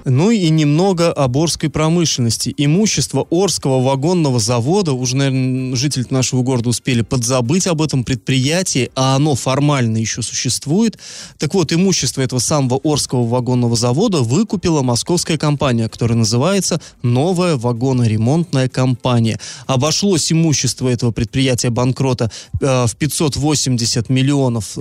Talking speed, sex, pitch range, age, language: 120 wpm, male, 125-165 Hz, 20-39, Russian